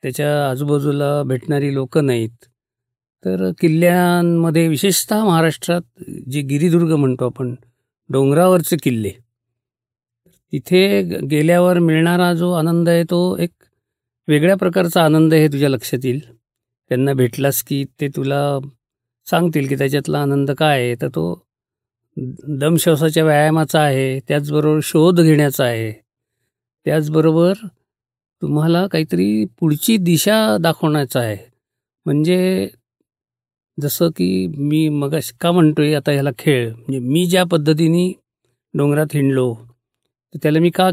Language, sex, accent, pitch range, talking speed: Marathi, male, native, 125-165 Hz, 110 wpm